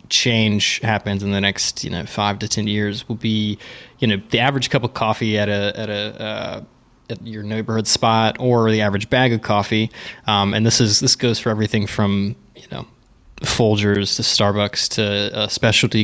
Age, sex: 20-39, male